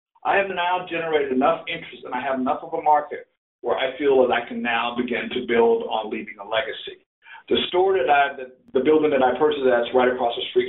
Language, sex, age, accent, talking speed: English, male, 50-69, American, 240 wpm